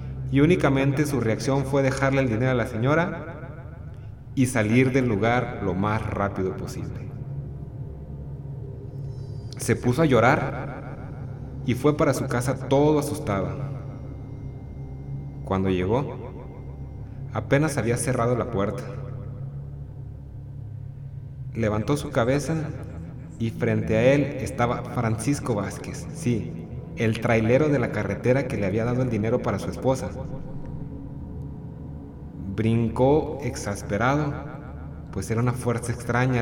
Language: Spanish